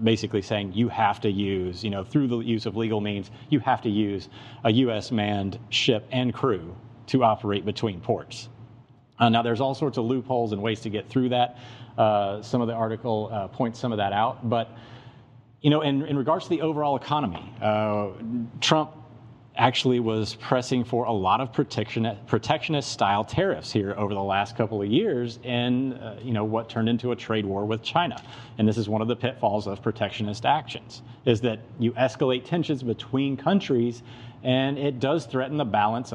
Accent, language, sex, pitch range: American, English, male, 110-130 Hz